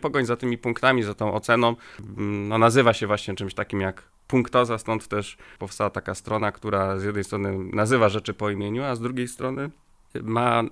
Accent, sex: native, male